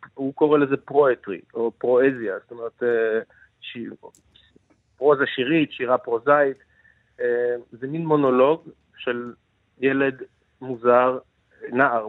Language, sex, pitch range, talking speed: Hebrew, male, 115-140 Hz, 100 wpm